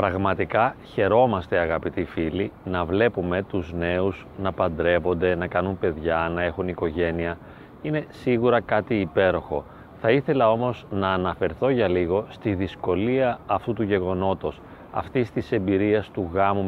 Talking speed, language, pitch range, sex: 135 wpm, Greek, 90-130 Hz, male